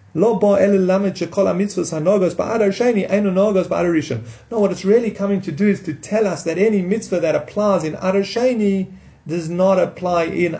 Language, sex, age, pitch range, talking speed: English, male, 30-49, 155-210 Hz, 125 wpm